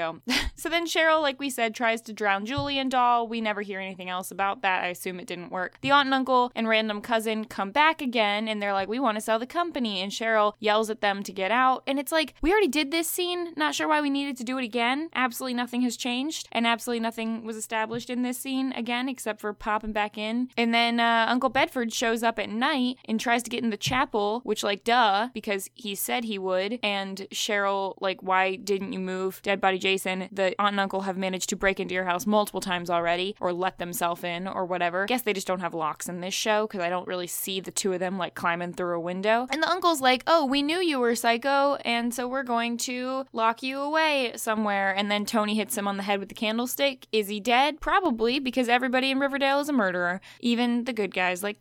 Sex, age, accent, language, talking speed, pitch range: female, 10-29, American, English, 245 wpm, 195-255 Hz